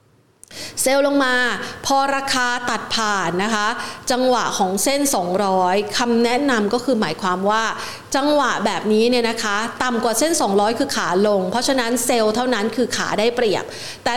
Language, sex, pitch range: Thai, female, 205-265 Hz